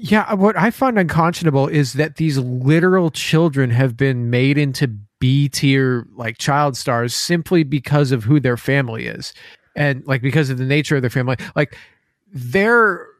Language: English